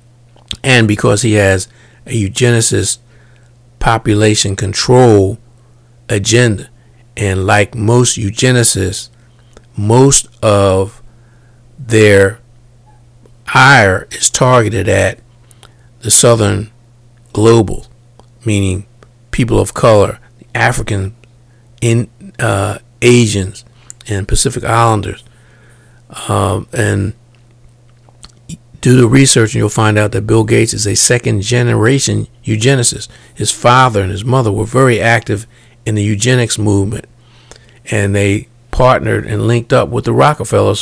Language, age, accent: English, 50-69, American